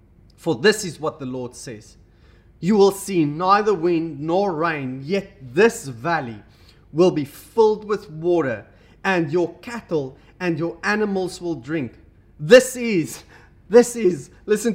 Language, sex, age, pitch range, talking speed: English, male, 30-49, 120-200 Hz, 140 wpm